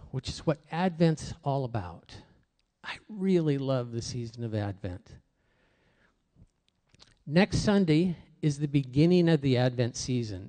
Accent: American